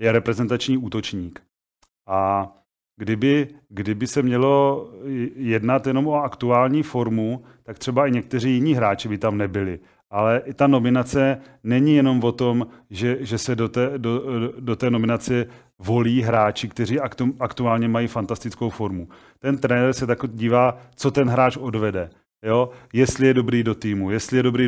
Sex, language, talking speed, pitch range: male, Czech, 160 wpm, 115-130 Hz